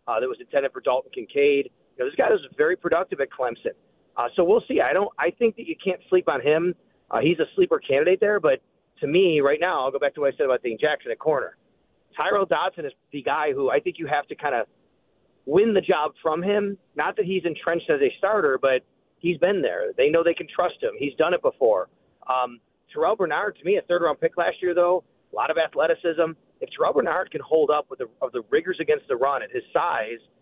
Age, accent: 40-59, American